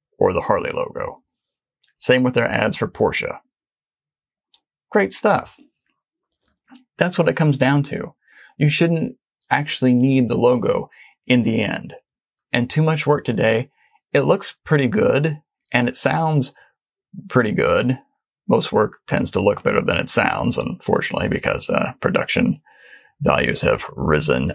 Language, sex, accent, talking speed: English, male, American, 140 wpm